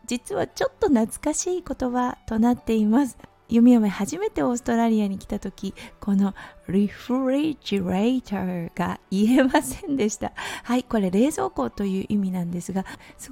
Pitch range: 195-270 Hz